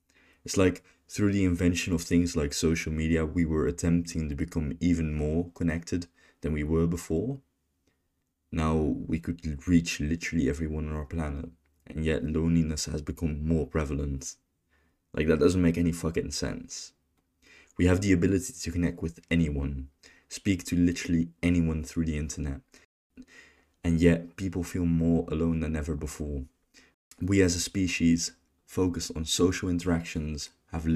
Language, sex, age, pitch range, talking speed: English, male, 20-39, 80-85 Hz, 150 wpm